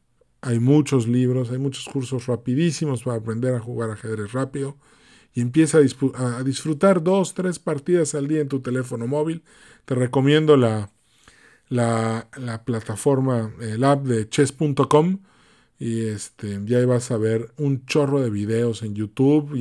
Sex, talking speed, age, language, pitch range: male, 155 wpm, 40-59, Spanish, 120-155 Hz